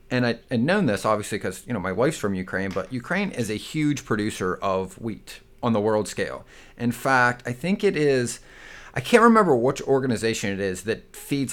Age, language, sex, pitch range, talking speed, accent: 30-49, English, male, 105-145 Hz, 200 wpm, American